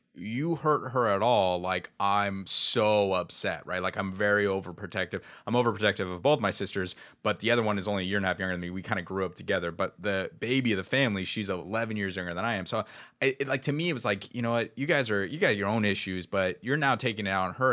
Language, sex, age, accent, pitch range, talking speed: English, male, 30-49, American, 95-120 Hz, 275 wpm